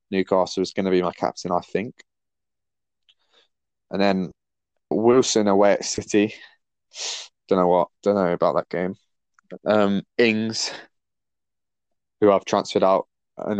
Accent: British